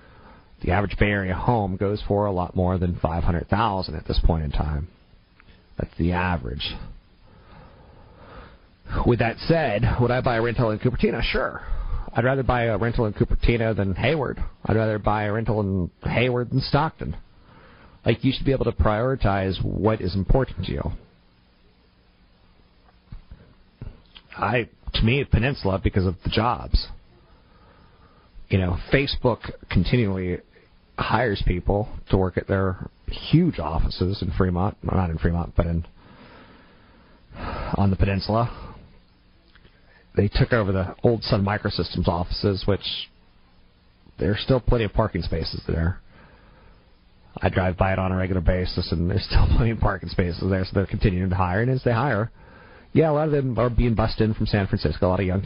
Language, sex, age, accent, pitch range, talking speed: English, male, 40-59, American, 90-115 Hz, 160 wpm